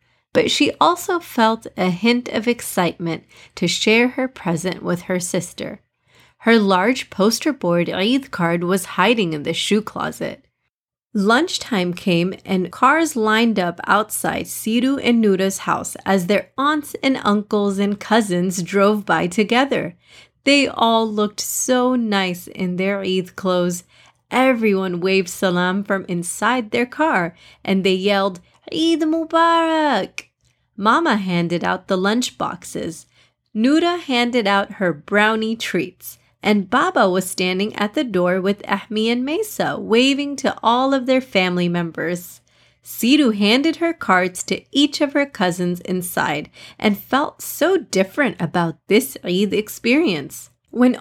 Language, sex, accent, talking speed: English, female, American, 140 wpm